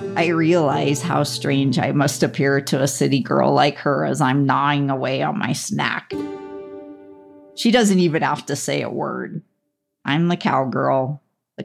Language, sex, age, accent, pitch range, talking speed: English, female, 50-69, American, 140-195 Hz, 165 wpm